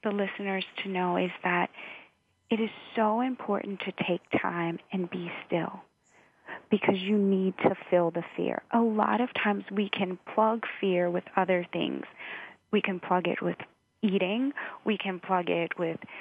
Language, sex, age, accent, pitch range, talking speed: English, female, 30-49, American, 180-220 Hz, 165 wpm